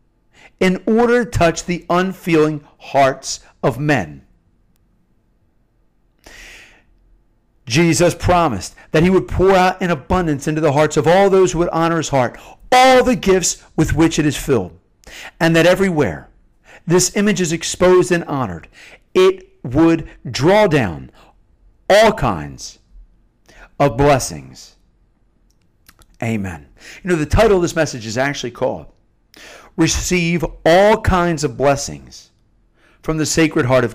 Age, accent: 50-69, American